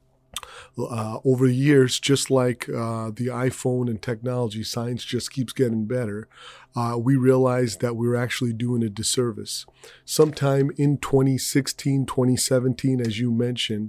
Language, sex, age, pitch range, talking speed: English, male, 30-49, 110-130 Hz, 125 wpm